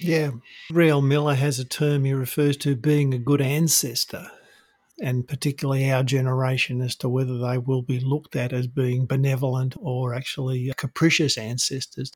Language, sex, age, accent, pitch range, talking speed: English, male, 50-69, Australian, 130-150 Hz, 160 wpm